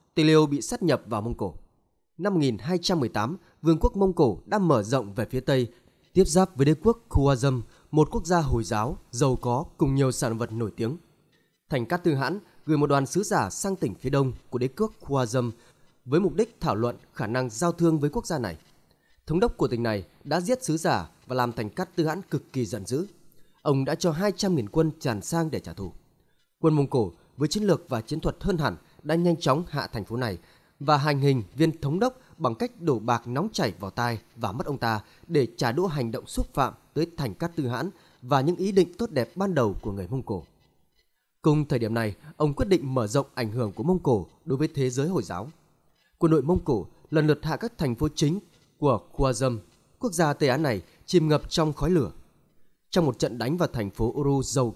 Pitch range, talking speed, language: 125-170 Hz, 230 wpm, Vietnamese